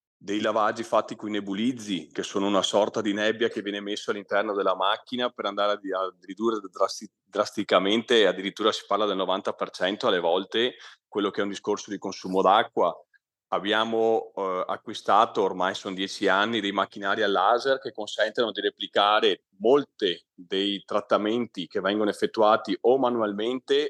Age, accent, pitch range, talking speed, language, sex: 40-59, native, 100-120 Hz, 155 wpm, Italian, male